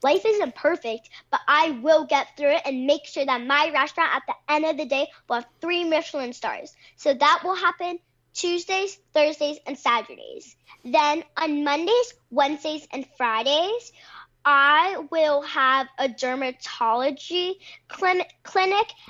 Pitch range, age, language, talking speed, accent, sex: 265-335 Hz, 10-29, English, 145 wpm, American, female